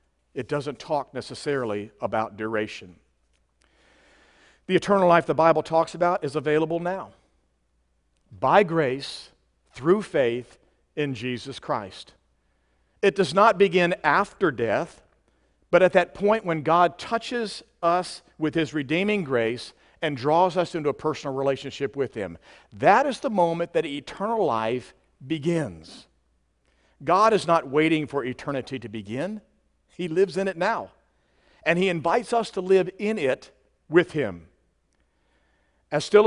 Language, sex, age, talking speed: English, male, 50-69, 135 wpm